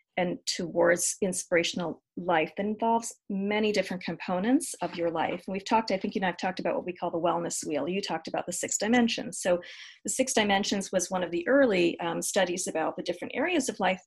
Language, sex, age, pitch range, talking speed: English, female, 40-59, 175-225 Hz, 220 wpm